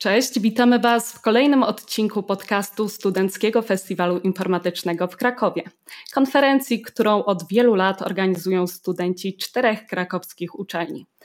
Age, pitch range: 20-39, 190-245 Hz